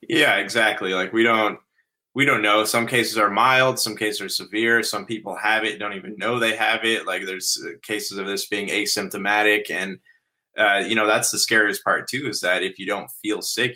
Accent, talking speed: American, 215 wpm